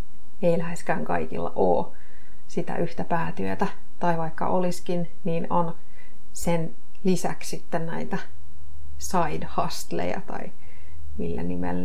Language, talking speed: Finnish, 105 wpm